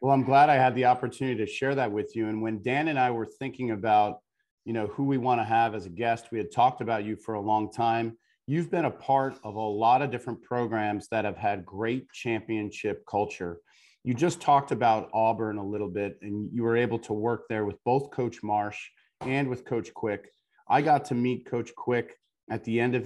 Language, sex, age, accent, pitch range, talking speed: English, male, 40-59, American, 105-125 Hz, 230 wpm